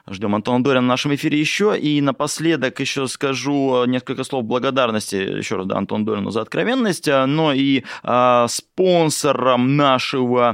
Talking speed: 150 wpm